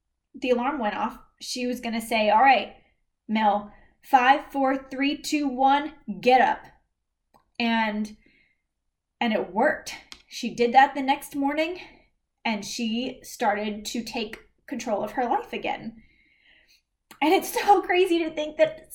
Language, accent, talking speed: English, American, 145 wpm